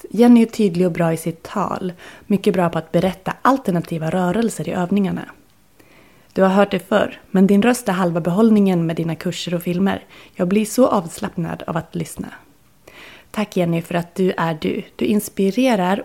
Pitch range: 175-215 Hz